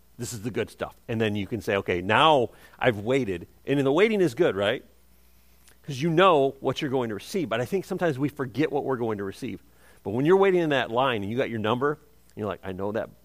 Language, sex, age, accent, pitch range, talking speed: English, male, 40-59, American, 95-145 Hz, 265 wpm